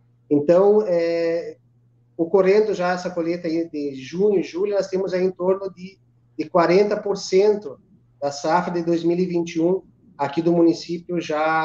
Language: Portuguese